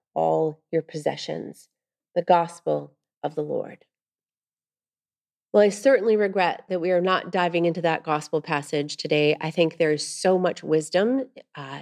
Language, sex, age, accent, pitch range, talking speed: English, female, 30-49, American, 160-200 Hz, 150 wpm